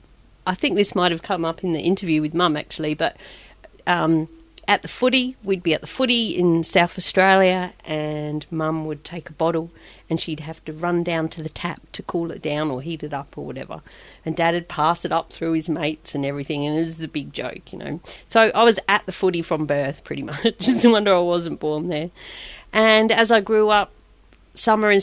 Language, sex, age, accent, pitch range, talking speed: English, female, 40-59, Australian, 155-195 Hz, 225 wpm